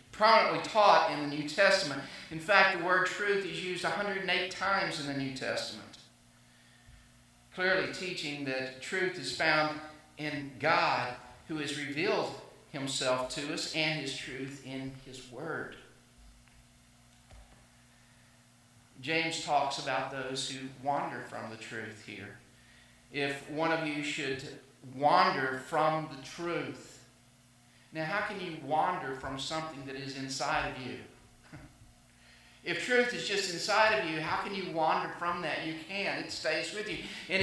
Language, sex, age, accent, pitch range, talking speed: English, male, 50-69, American, 130-180 Hz, 145 wpm